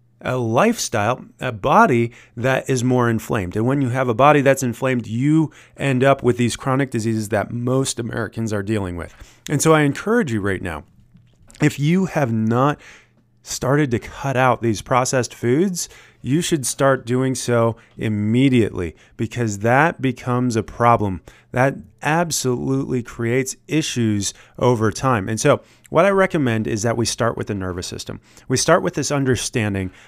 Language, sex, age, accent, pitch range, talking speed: English, male, 30-49, American, 105-130 Hz, 165 wpm